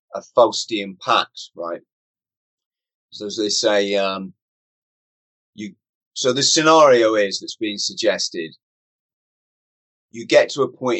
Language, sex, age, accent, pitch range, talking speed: English, male, 30-49, British, 115-150 Hz, 120 wpm